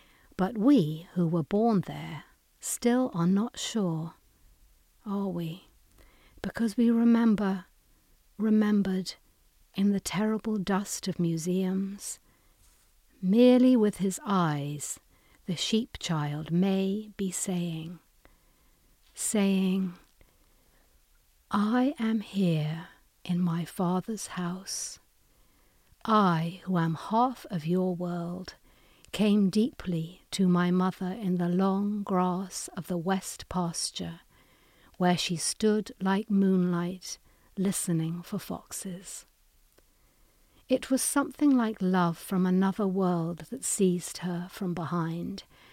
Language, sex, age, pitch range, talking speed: English, female, 60-79, 175-210 Hz, 105 wpm